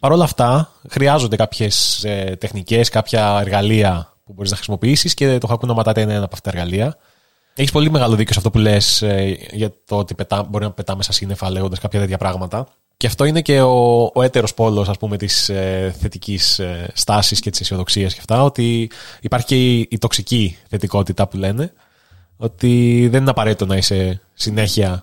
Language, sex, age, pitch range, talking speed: Greek, male, 20-39, 100-125 Hz, 180 wpm